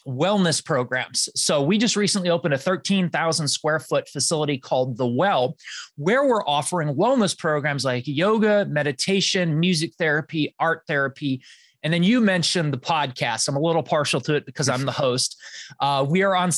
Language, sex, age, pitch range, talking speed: English, male, 30-49, 145-180 Hz, 170 wpm